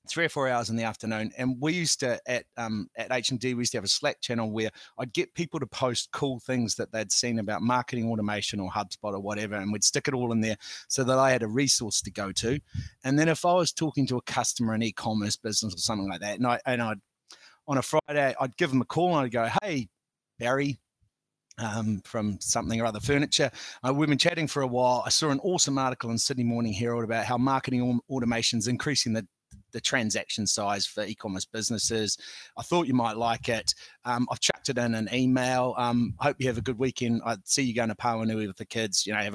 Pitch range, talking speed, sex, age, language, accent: 110-135 Hz, 240 wpm, male, 30-49, English, Australian